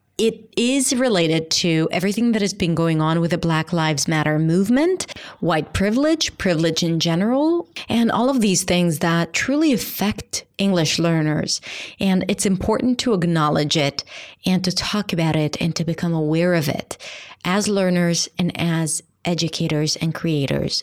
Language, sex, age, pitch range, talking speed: English, female, 30-49, 160-195 Hz, 160 wpm